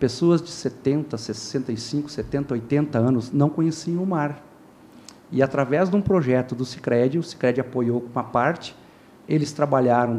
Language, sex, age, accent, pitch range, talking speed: Portuguese, male, 50-69, Brazilian, 125-150 Hz, 145 wpm